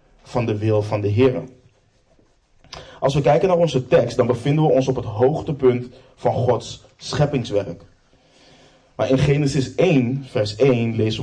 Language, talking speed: Dutch, 155 wpm